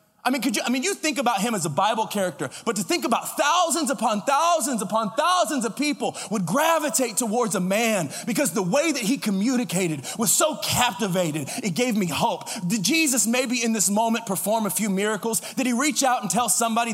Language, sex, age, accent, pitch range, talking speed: English, male, 30-49, American, 185-235 Hz, 215 wpm